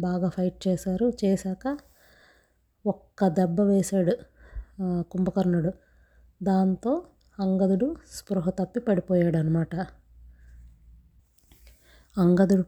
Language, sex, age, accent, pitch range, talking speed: Telugu, female, 20-39, native, 175-200 Hz, 70 wpm